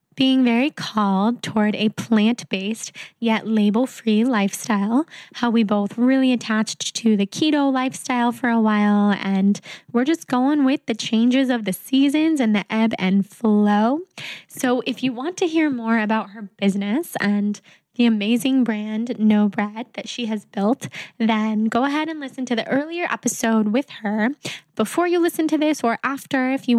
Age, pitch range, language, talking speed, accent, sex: 10-29, 210-250 Hz, English, 170 wpm, American, female